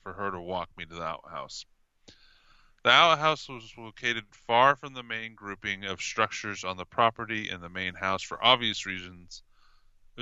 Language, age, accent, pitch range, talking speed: English, 20-39, American, 95-120 Hz, 175 wpm